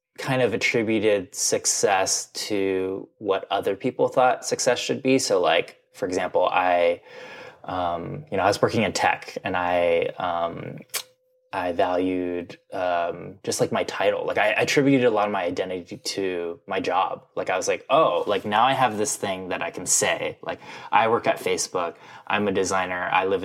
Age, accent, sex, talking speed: 20-39, American, male, 185 wpm